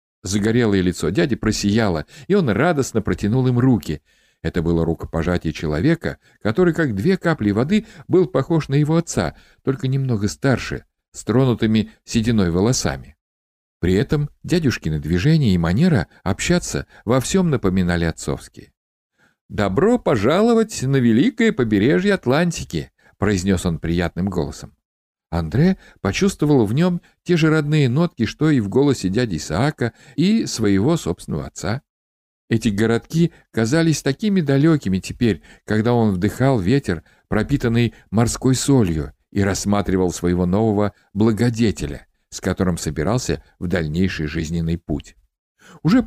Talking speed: 130 wpm